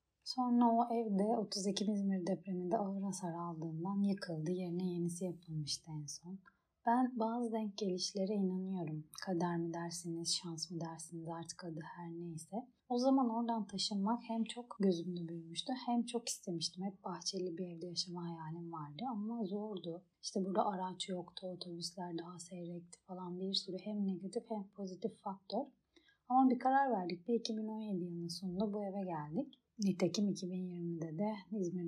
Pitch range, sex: 170-215 Hz, female